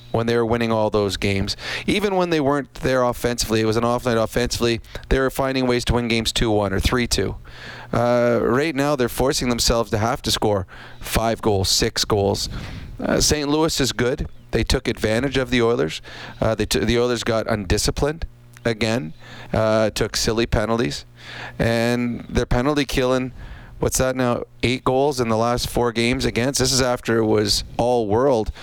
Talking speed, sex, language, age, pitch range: 180 wpm, male, English, 30-49, 115-130 Hz